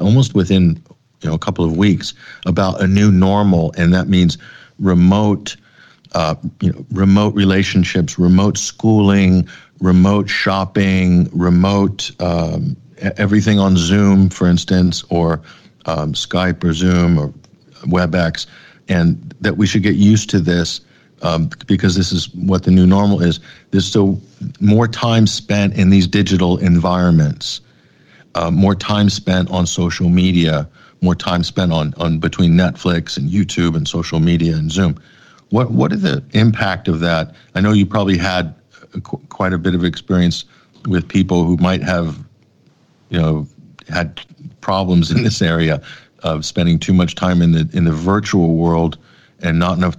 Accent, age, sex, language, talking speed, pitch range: American, 50-69, male, English, 155 wpm, 85-100 Hz